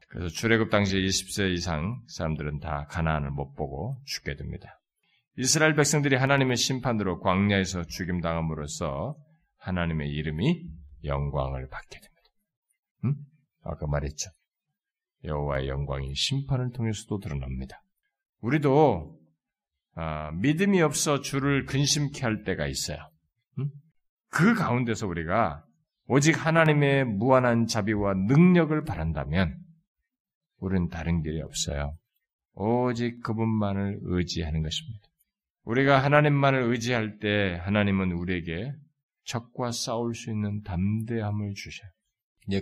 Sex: male